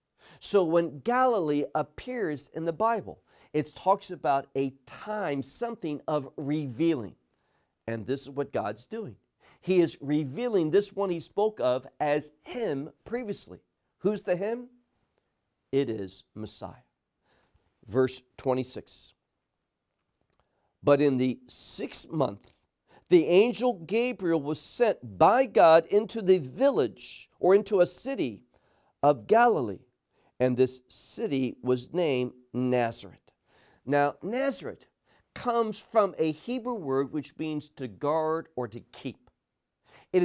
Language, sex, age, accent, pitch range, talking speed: English, male, 50-69, American, 130-205 Hz, 120 wpm